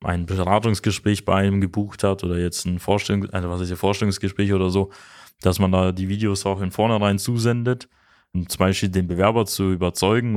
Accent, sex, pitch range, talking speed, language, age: German, male, 95-110 Hz, 170 wpm, German, 20-39